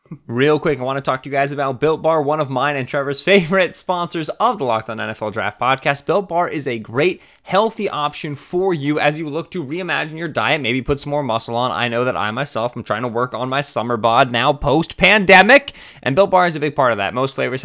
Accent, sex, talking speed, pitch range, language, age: American, male, 250 wpm, 125-160 Hz, English, 20-39